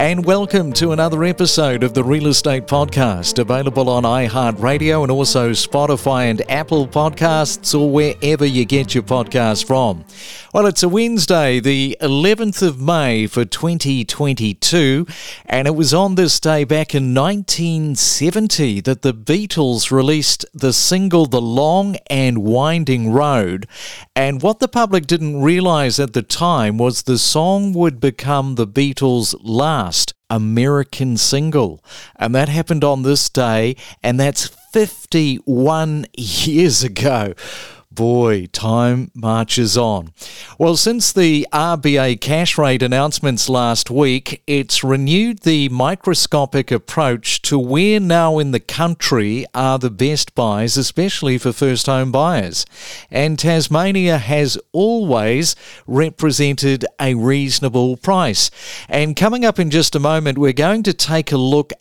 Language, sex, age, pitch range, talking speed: English, male, 40-59, 125-160 Hz, 135 wpm